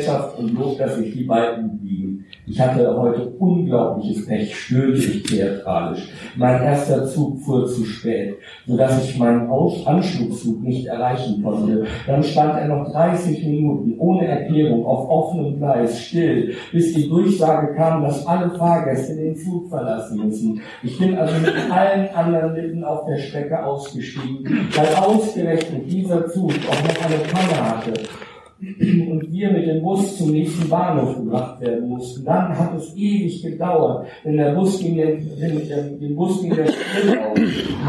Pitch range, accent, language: 125-170 Hz, German, German